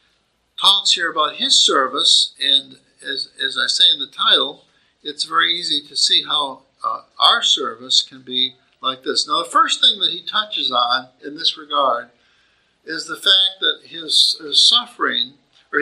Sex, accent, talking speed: male, American, 170 wpm